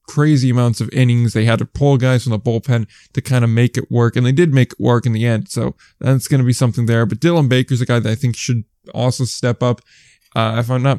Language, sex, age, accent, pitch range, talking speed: English, male, 10-29, American, 115-130 Hz, 275 wpm